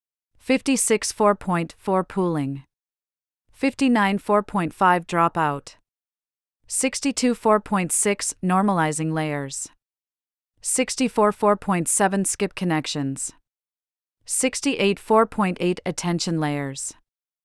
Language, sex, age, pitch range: English, female, 40-59, 150-210 Hz